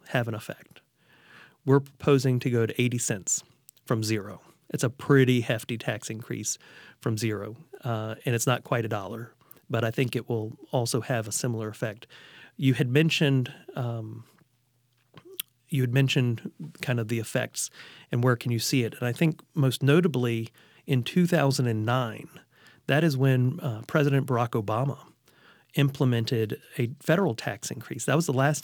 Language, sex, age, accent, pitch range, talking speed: English, male, 40-59, American, 120-150 Hz, 160 wpm